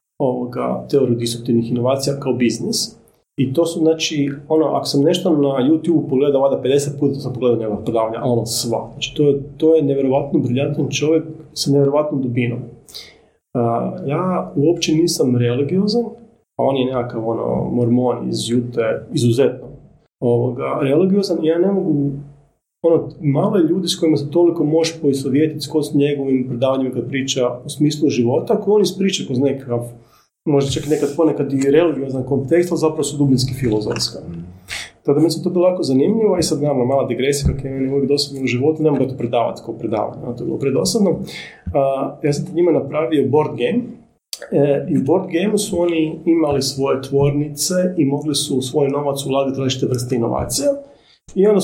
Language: Croatian